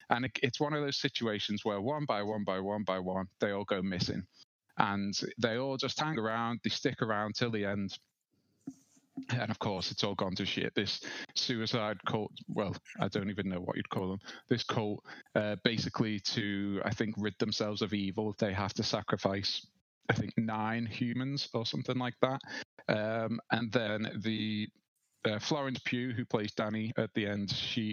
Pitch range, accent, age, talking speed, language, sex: 105-125 Hz, British, 30-49, 185 wpm, English, male